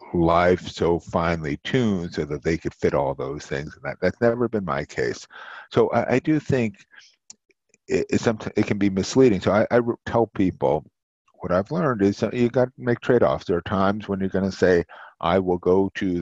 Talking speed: 205 wpm